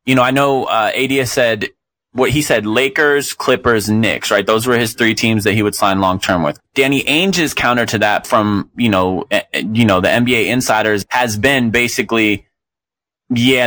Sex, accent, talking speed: male, American, 195 wpm